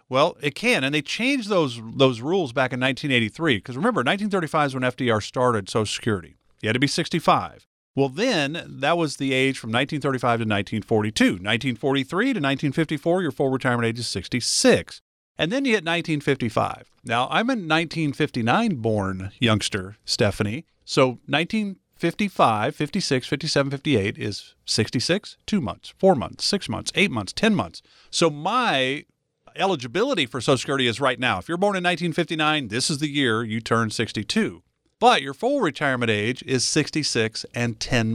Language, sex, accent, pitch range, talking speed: English, male, American, 120-165 Hz, 160 wpm